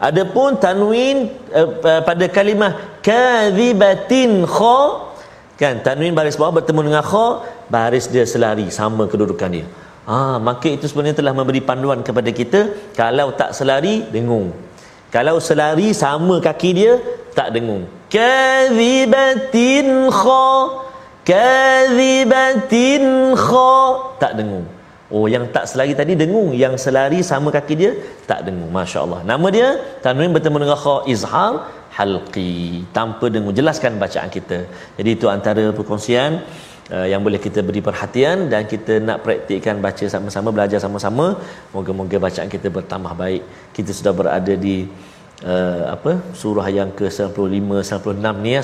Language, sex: Malayalam, male